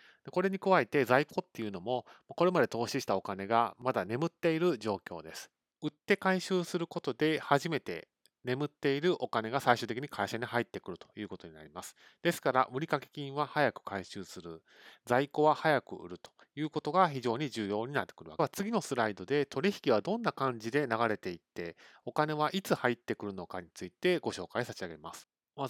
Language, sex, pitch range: Japanese, male, 115-160 Hz